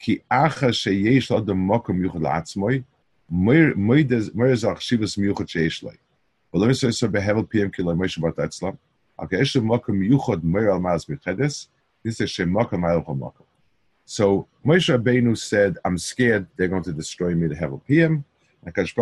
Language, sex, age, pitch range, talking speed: English, male, 50-69, 90-120 Hz, 100 wpm